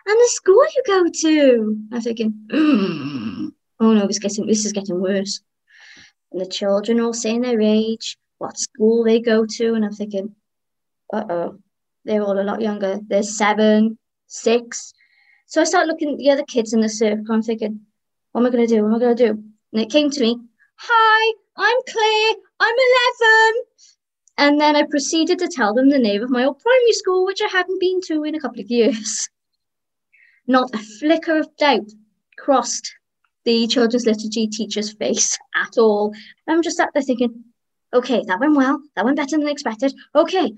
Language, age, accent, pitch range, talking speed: English, 20-39, British, 220-335 Hz, 190 wpm